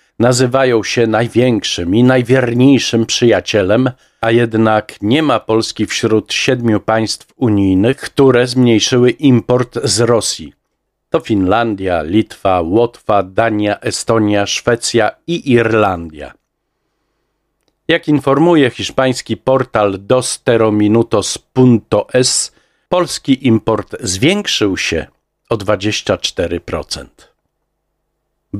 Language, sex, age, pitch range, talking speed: Polish, male, 50-69, 100-125 Hz, 85 wpm